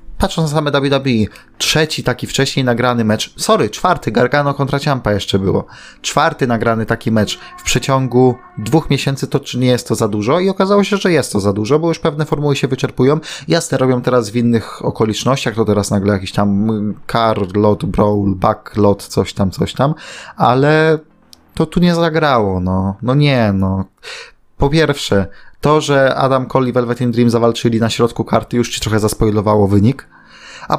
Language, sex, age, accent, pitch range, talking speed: Polish, male, 20-39, native, 115-150 Hz, 185 wpm